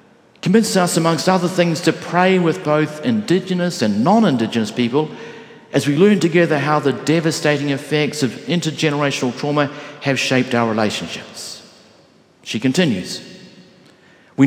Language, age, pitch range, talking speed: English, 50-69, 125-180 Hz, 130 wpm